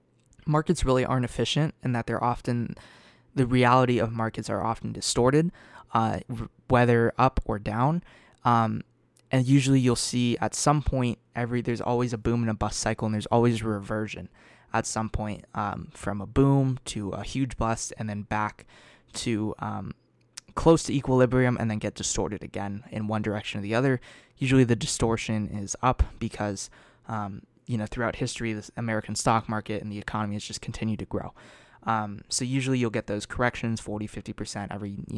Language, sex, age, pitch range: English, male, 20-39, 110-125 Hz